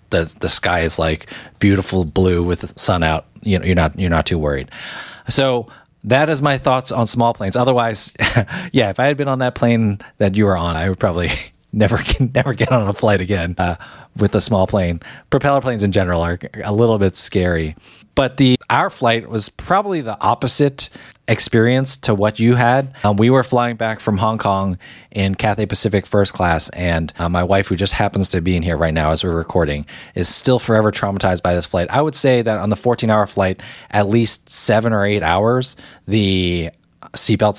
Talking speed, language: 210 wpm, English